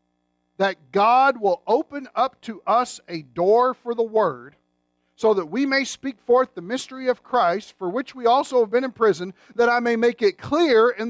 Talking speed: 200 wpm